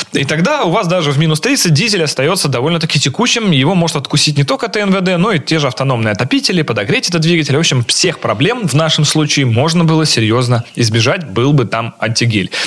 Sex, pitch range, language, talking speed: male, 120-170 Hz, Russian, 200 wpm